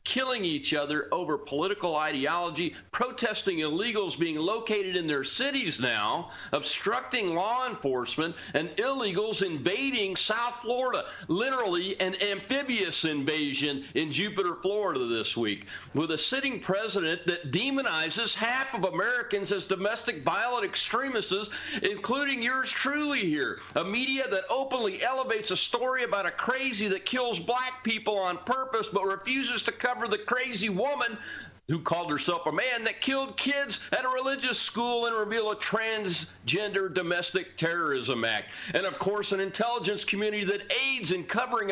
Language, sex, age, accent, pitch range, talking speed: English, male, 50-69, American, 165-235 Hz, 145 wpm